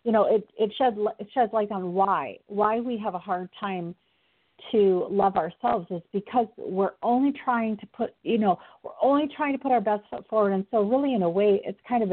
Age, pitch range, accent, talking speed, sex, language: 50-69, 180-225 Hz, American, 230 wpm, female, English